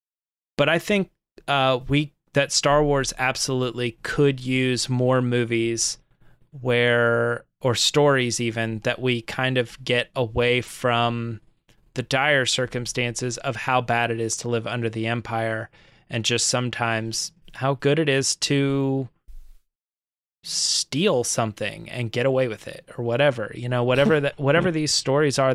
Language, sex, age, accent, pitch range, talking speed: English, male, 20-39, American, 120-140 Hz, 145 wpm